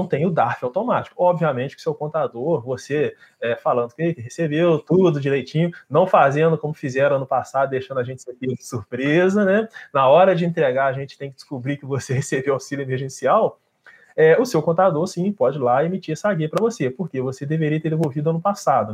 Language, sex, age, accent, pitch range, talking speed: Portuguese, male, 20-39, Brazilian, 130-165 Hz, 190 wpm